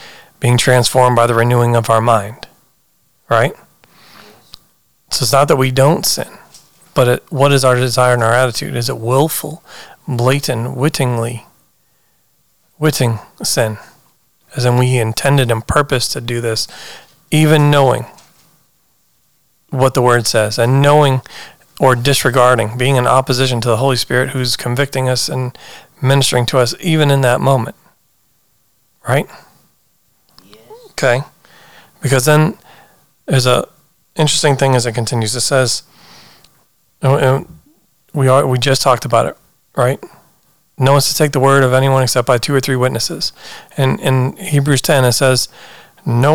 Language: English